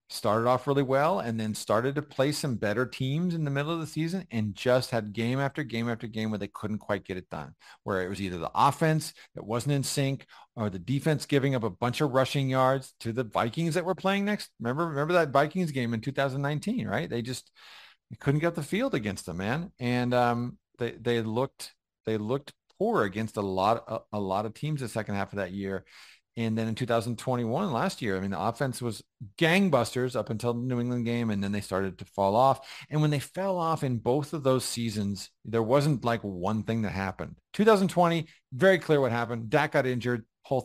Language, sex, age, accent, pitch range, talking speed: English, male, 40-59, American, 110-145 Hz, 225 wpm